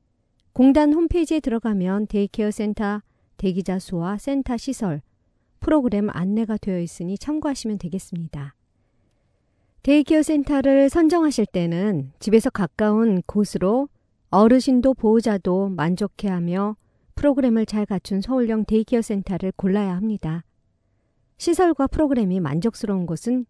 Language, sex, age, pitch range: Korean, male, 50-69, 175-245 Hz